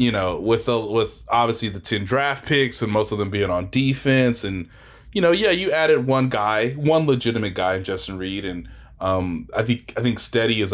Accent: American